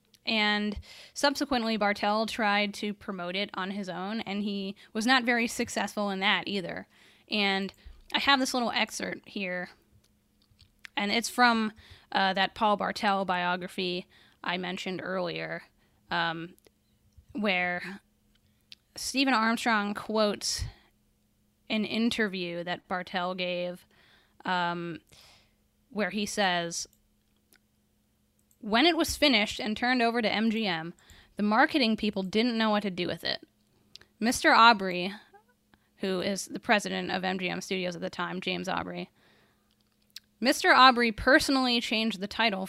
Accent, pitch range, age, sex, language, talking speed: American, 185-230 Hz, 10-29, female, English, 125 wpm